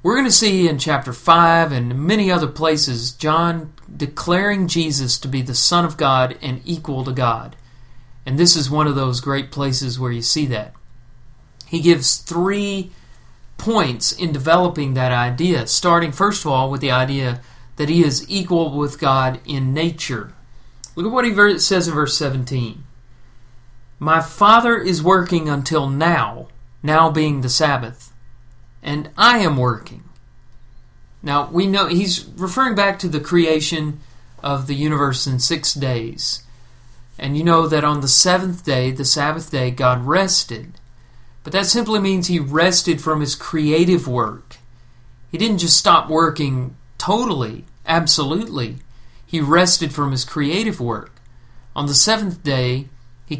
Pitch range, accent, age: 125-170 Hz, American, 40-59